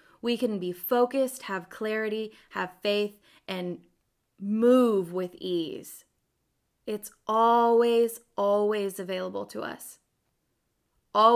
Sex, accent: female, American